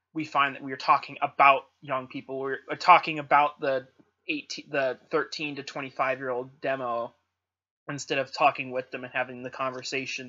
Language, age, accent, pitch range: English, 20-39, American, 130-155 Hz